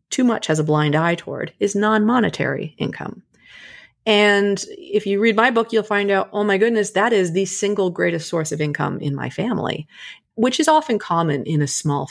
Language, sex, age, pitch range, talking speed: English, female, 30-49, 165-215 Hz, 200 wpm